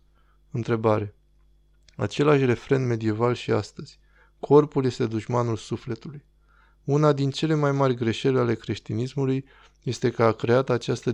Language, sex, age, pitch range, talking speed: Romanian, male, 20-39, 115-140 Hz, 125 wpm